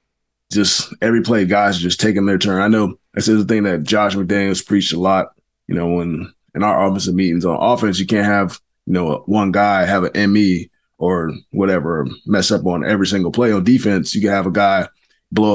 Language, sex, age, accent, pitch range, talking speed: English, male, 20-39, American, 100-110 Hz, 215 wpm